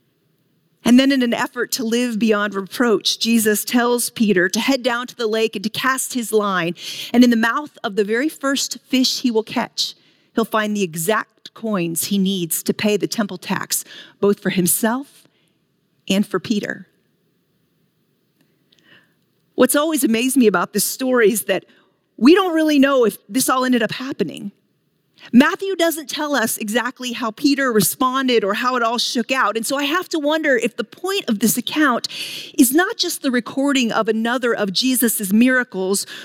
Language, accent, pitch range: English, American, 210-270 Hz